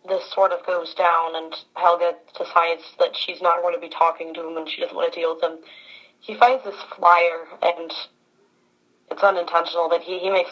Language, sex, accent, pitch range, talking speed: English, female, American, 165-200 Hz, 205 wpm